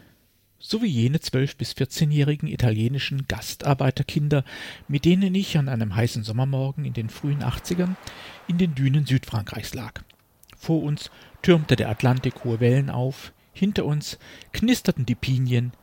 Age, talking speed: 50-69, 145 wpm